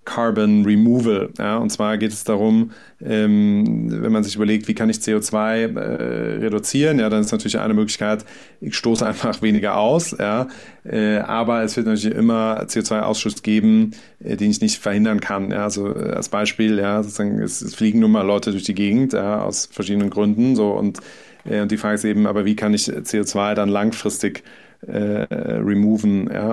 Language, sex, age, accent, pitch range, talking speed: German, male, 30-49, German, 105-115 Hz, 185 wpm